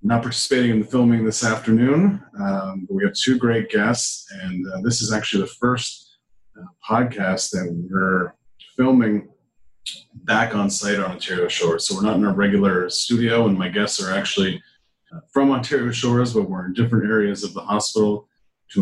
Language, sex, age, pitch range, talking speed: English, male, 30-49, 100-120 Hz, 180 wpm